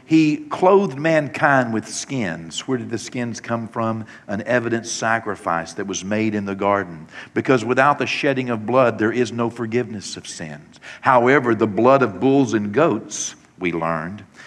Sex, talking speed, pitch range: male, 170 wpm, 100-125 Hz